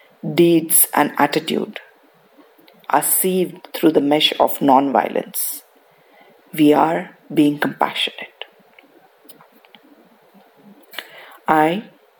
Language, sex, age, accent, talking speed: English, female, 50-69, Indian, 75 wpm